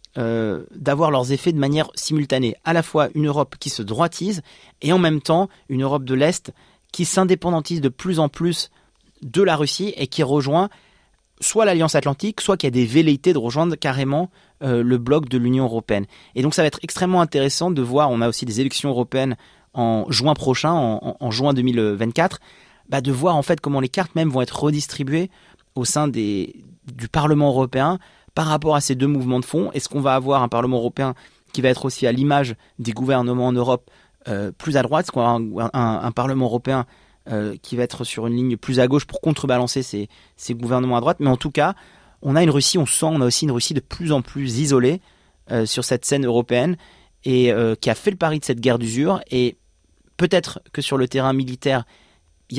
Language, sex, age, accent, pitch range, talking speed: French, male, 30-49, French, 125-155 Hz, 220 wpm